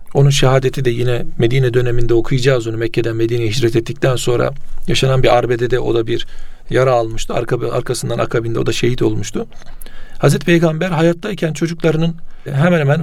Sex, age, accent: male, 40-59, native